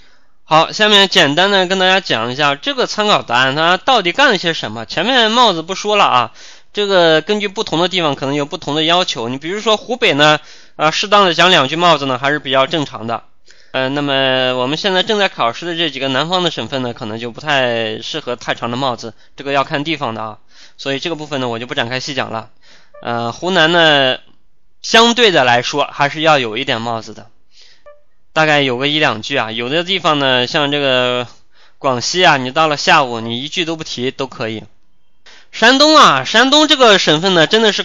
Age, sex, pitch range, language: 20-39, male, 130-175 Hz, Chinese